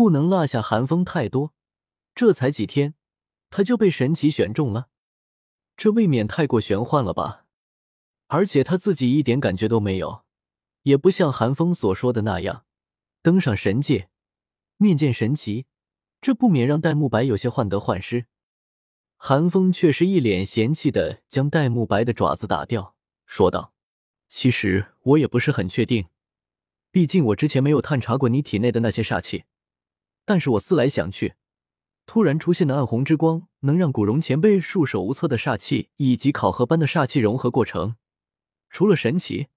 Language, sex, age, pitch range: Chinese, male, 20-39, 110-165 Hz